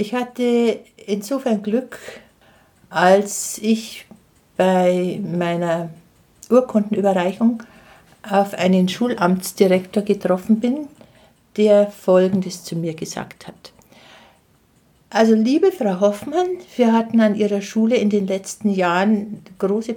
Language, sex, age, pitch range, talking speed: German, female, 60-79, 190-235 Hz, 100 wpm